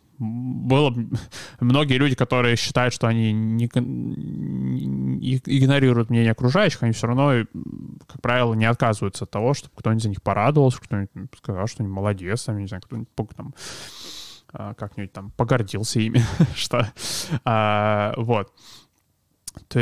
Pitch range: 110-135 Hz